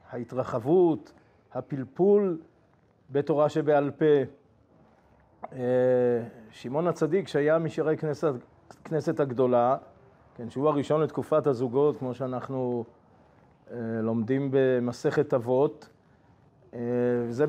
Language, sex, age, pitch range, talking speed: Hebrew, male, 40-59, 125-160 Hz, 80 wpm